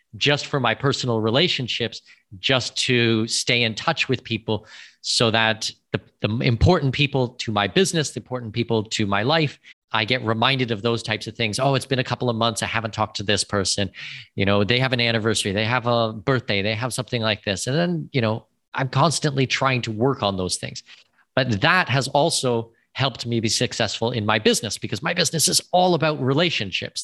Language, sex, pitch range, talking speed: English, male, 110-140 Hz, 205 wpm